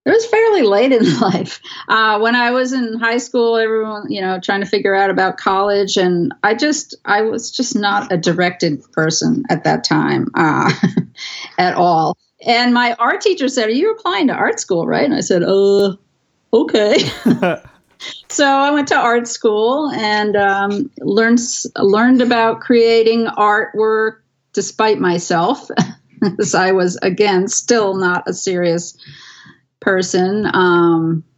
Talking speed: 155 wpm